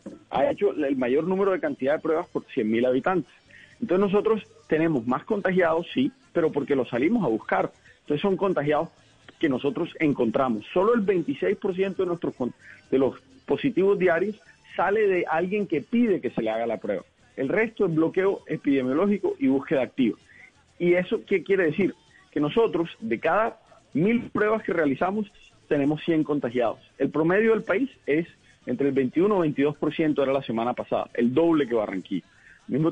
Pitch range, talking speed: 140-200 Hz, 170 wpm